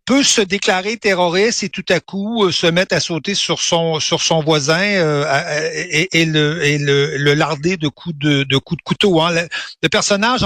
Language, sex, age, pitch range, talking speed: French, male, 60-79, 150-195 Hz, 210 wpm